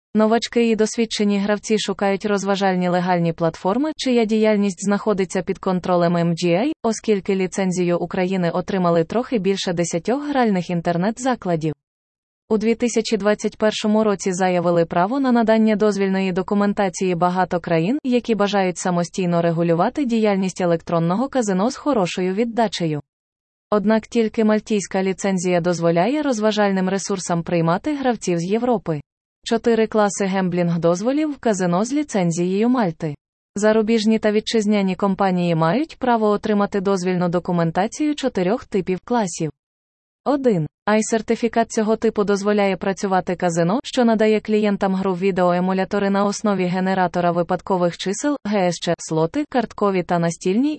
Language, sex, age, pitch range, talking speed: Ukrainian, female, 20-39, 180-220 Hz, 115 wpm